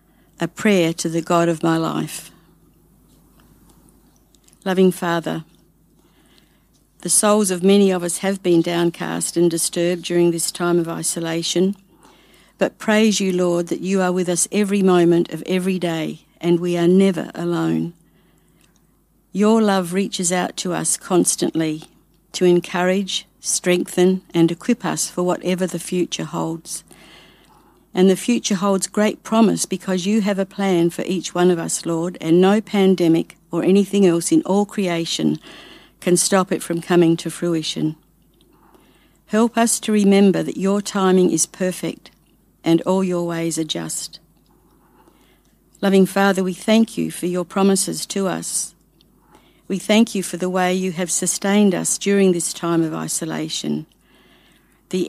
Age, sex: 60-79, female